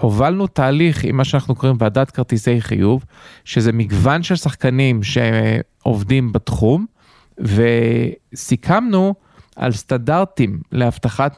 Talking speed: 100 wpm